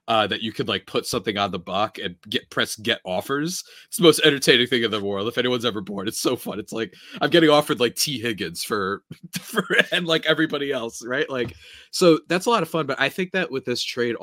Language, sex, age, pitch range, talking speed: English, male, 30-49, 95-135 Hz, 250 wpm